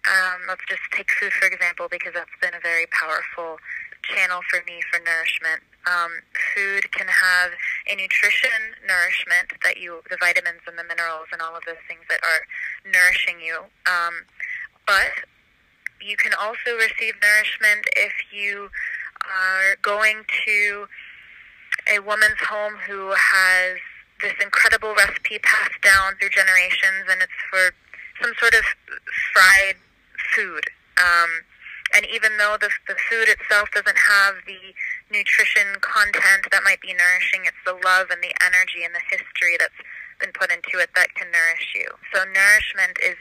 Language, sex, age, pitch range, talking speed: English, female, 20-39, 175-205 Hz, 150 wpm